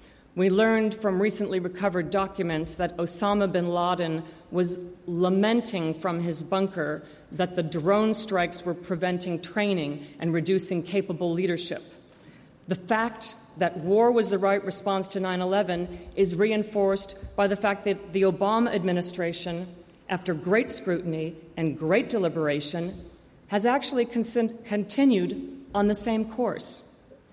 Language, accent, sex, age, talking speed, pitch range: English, American, female, 40-59, 125 wpm, 175-210 Hz